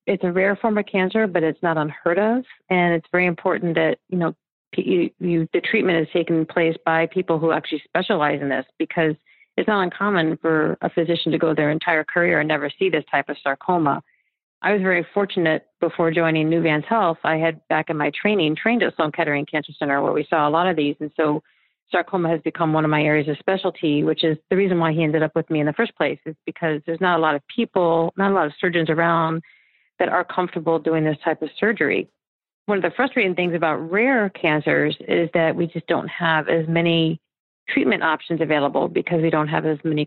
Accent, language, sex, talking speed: American, English, female, 220 wpm